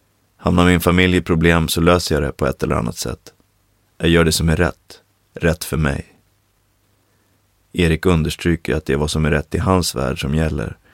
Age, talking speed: 30-49, 205 wpm